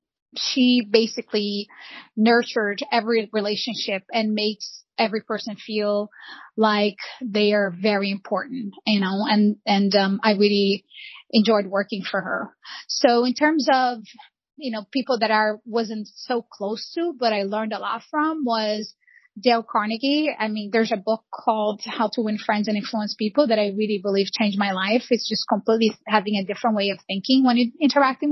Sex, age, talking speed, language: female, 20-39, 170 wpm, English